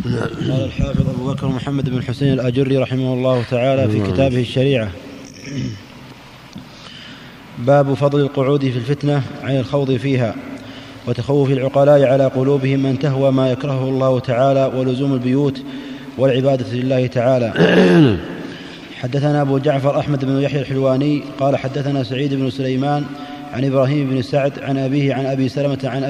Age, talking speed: 30-49, 135 wpm